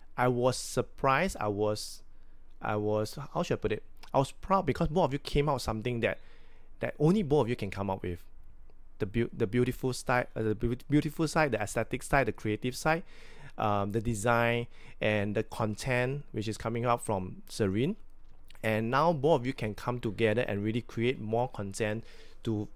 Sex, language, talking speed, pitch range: male, English, 200 wpm, 105-125 Hz